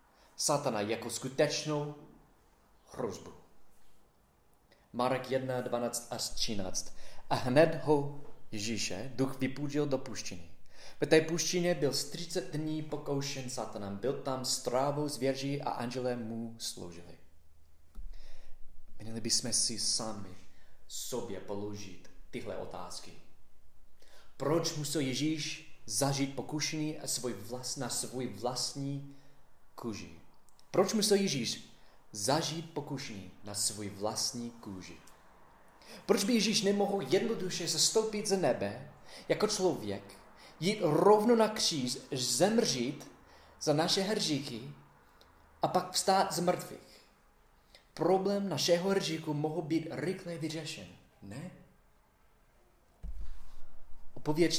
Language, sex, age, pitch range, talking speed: Czech, male, 30-49, 110-160 Hz, 100 wpm